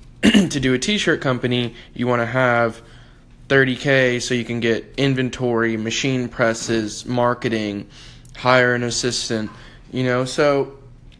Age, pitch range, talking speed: 10-29, 110-130 Hz, 130 wpm